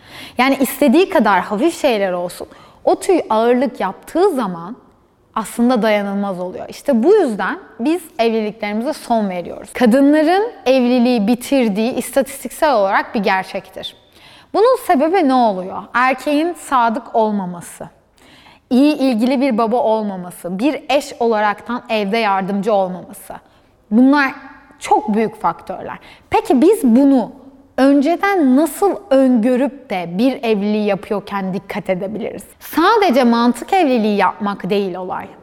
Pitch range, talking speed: 220-305 Hz, 115 wpm